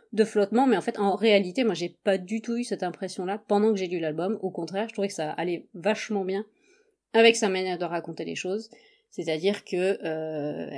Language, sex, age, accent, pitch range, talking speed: French, female, 30-49, French, 165-210 Hz, 235 wpm